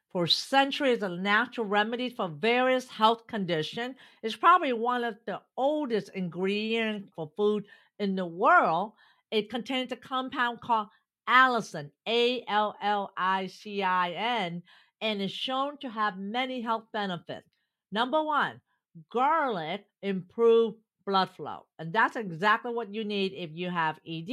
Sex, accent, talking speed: female, American, 145 wpm